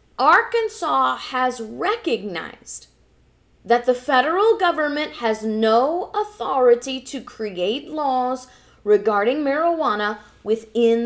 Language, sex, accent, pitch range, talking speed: English, female, American, 210-270 Hz, 85 wpm